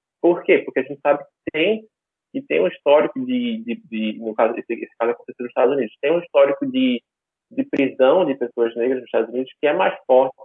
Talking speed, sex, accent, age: 230 wpm, male, Brazilian, 20-39